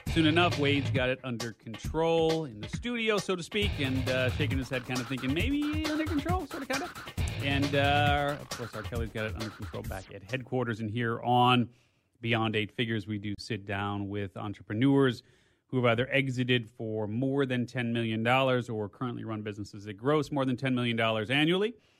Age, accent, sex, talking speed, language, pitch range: 30-49, American, male, 200 wpm, English, 110-140 Hz